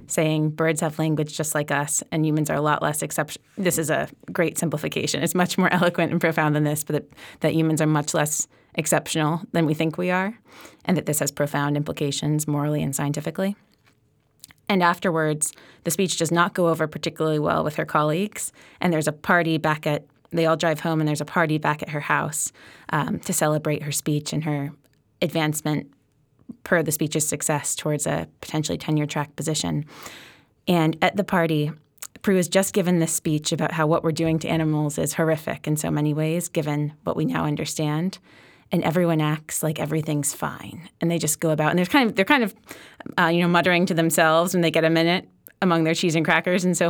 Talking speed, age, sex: 205 wpm, 20-39, female